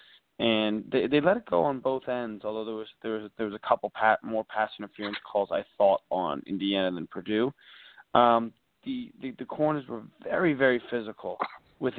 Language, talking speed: English, 195 wpm